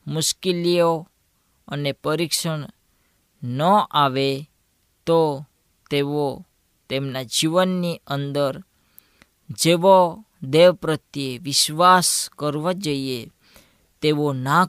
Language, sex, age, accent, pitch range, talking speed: Gujarati, female, 20-39, native, 135-170 Hz, 60 wpm